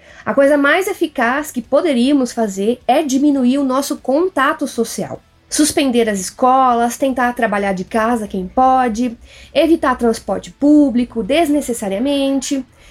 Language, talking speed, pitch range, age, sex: Portuguese, 120 wpm, 225-290 Hz, 20-39, female